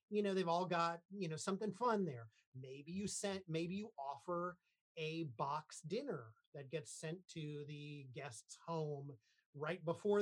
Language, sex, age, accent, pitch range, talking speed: English, male, 30-49, American, 150-190 Hz, 165 wpm